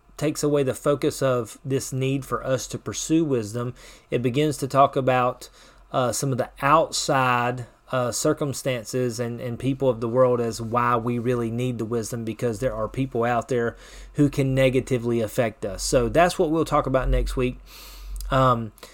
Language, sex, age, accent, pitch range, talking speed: English, male, 30-49, American, 115-145 Hz, 180 wpm